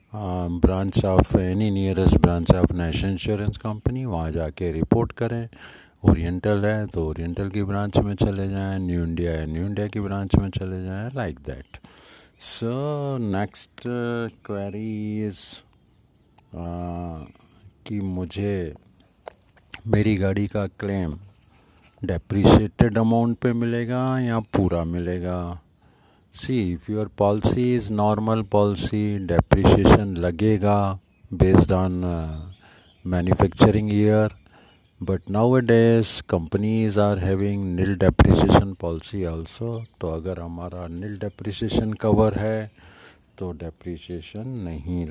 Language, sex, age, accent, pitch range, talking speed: Hindi, male, 50-69, native, 90-110 Hz, 110 wpm